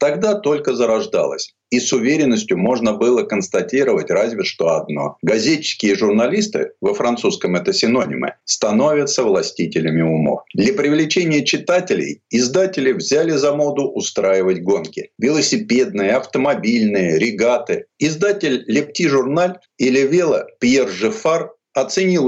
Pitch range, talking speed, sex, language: 135-205 Hz, 110 wpm, male, Russian